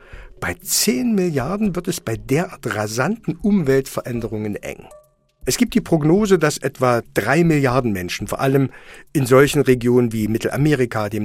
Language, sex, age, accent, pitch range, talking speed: German, male, 50-69, German, 110-160 Hz, 145 wpm